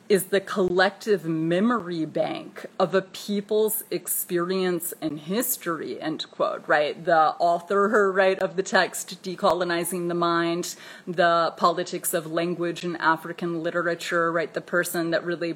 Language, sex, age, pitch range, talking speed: English, female, 30-49, 175-200 Hz, 135 wpm